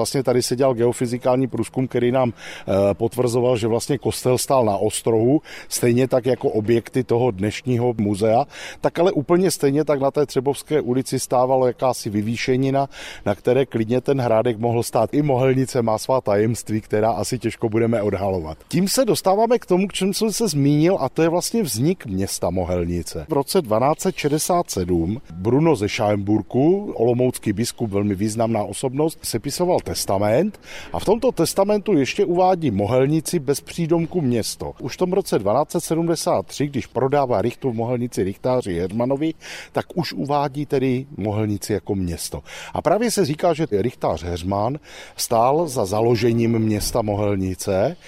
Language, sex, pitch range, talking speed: Czech, male, 110-155 Hz, 150 wpm